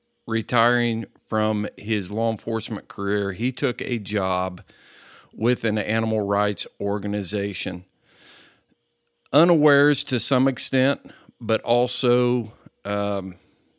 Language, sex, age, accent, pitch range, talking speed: English, male, 50-69, American, 105-130 Hz, 95 wpm